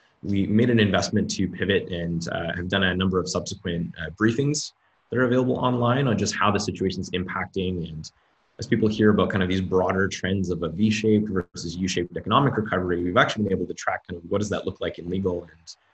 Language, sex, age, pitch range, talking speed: English, male, 20-39, 85-110 Hz, 220 wpm